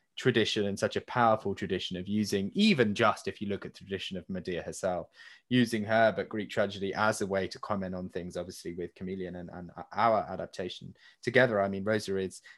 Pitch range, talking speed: 95-115 Hz, 205 wpm